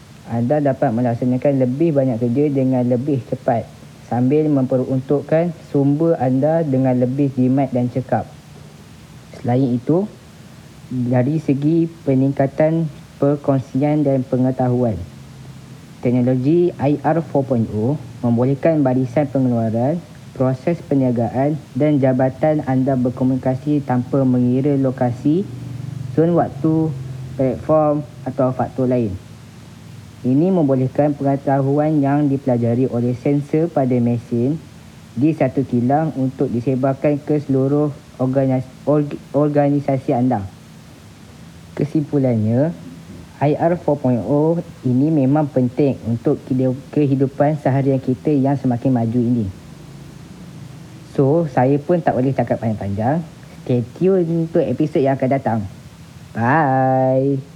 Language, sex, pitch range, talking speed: Malay, female, 125-150 Hz, 100 wpm